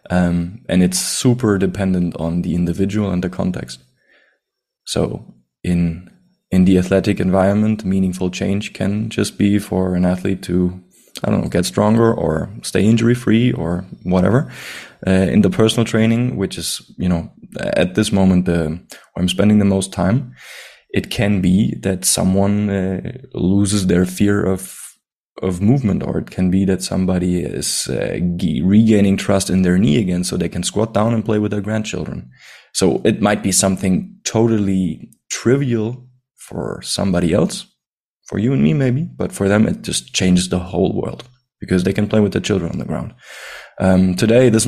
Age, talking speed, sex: 20-39, 175 wpm, male